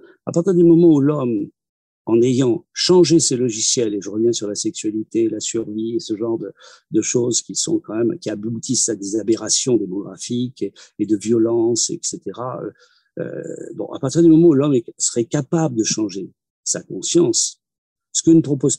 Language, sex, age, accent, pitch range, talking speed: French, male, 50-69, French, 115-165 Hz, 190 wpm